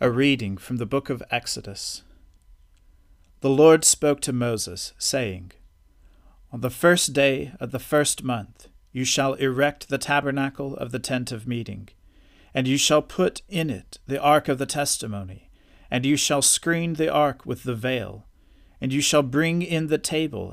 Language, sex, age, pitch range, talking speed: English, male, 40-59, 105-145 Hz, 170 wpm